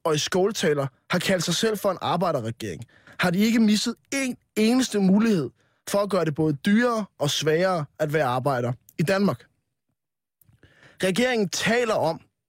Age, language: 20-39, Danish